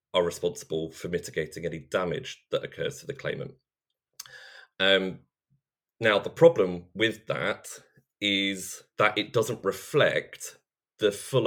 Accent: British